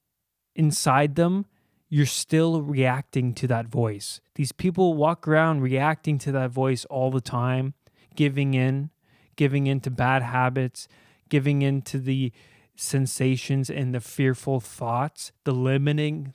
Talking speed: 135 wpm